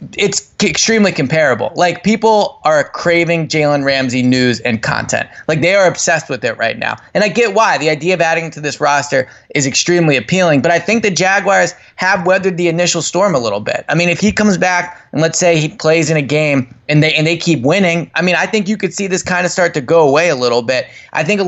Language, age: English, 20-39